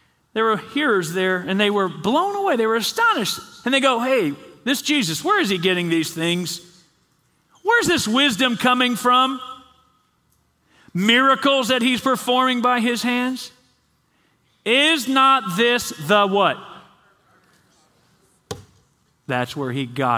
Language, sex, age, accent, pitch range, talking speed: English, male, 40-59, American, 190-265 Hz, 135 wpm